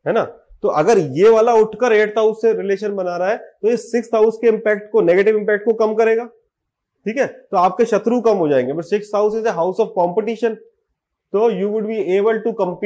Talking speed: 140 wpm